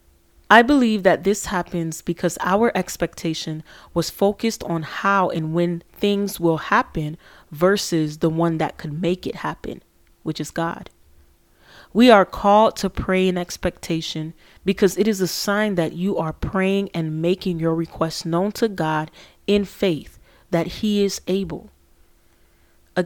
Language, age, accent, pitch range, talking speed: English, 30-49, American, 160-195 Hz, 150 wpm